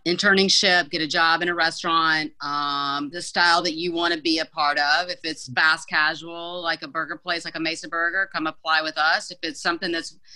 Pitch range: 160-185 Hz